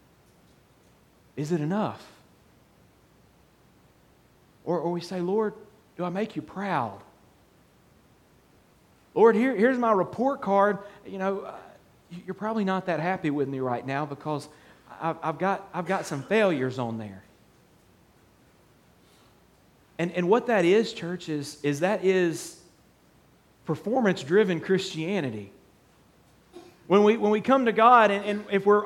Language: English